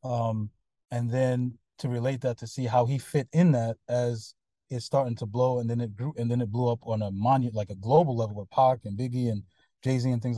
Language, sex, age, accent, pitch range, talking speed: English, male, 20-39, American, 105-125 Hz, 245 wpm